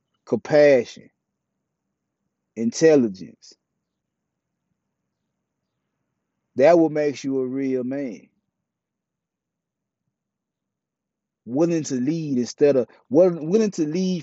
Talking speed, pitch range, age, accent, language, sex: 70 wpm, 125-155 Hz, 30-49, American, English, male